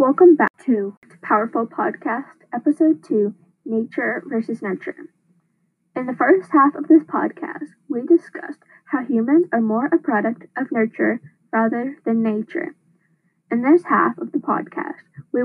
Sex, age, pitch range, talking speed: female, 10-29, 225-295 Hz, 145 wpm